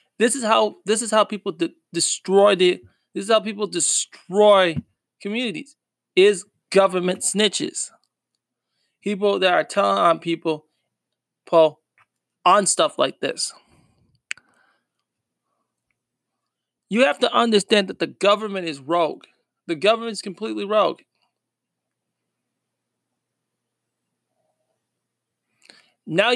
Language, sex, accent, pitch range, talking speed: English, male, American, 175-225 Hz, 100 wpm